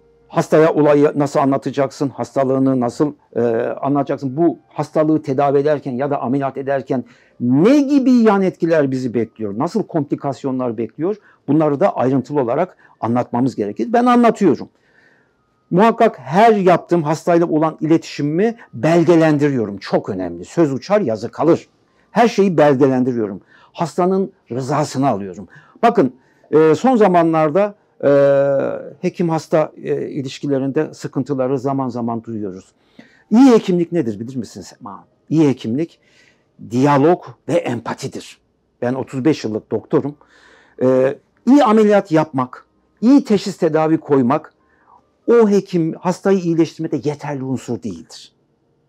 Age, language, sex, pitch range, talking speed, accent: 60-79, Turkish, male, 130-180 Hz, 110 wpm, native